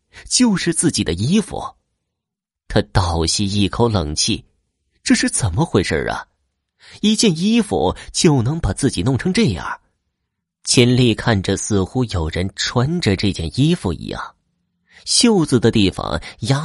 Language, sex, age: Chinese, male, 30-49